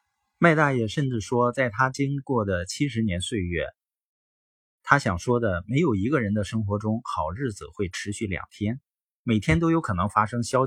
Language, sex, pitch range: Chinese, male, 95-140 Hz